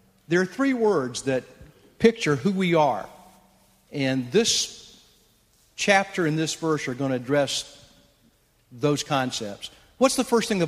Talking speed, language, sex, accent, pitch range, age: 145 wpm, English, male, American, 140-200 Hz, 50-69